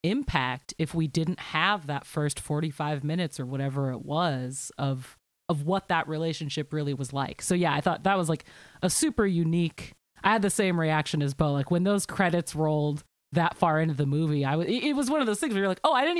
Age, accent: 30-49, American